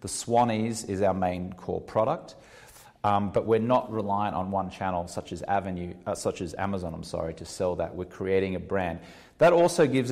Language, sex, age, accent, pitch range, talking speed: English, male, 30-49, Australian, 95-115 Hz, 200 wpm